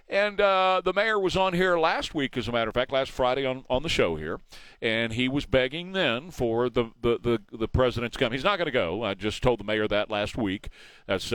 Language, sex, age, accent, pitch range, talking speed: English, male, 50-69, American, 120-180 Hz, 245 wpm